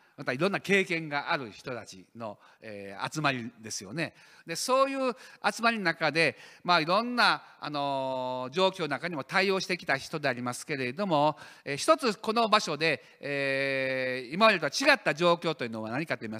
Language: Japanese